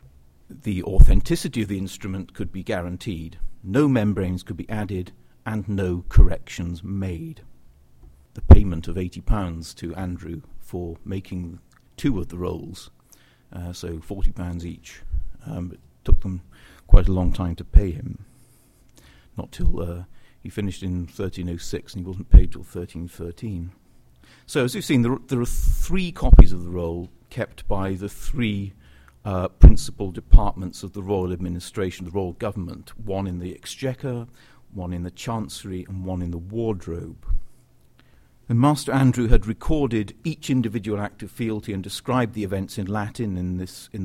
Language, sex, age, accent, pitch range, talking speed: English, male, 50-69, British, 90-110 Hz, 150 wpm